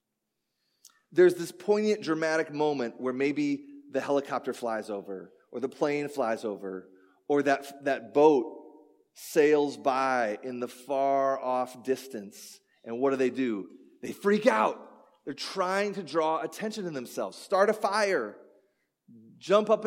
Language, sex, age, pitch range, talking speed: English, male, 30-49, 130-205 Hz, 140 wpm